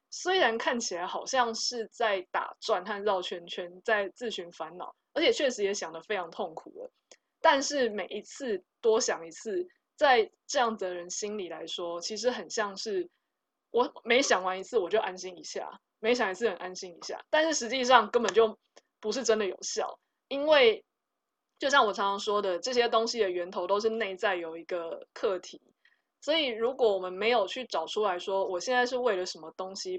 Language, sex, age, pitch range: Chinese, female, 20-39, 190-255 Hz